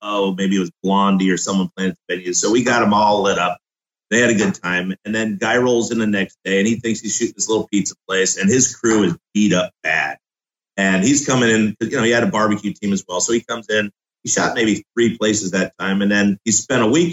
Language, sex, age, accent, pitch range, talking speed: English, male, 30-49, American, 100-120 Hz, 265 wpm